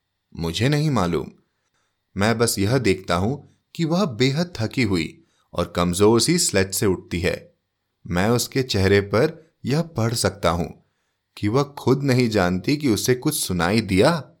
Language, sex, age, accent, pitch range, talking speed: Hindi, male, 30-49, native, 95-155 Hz, 160 wpm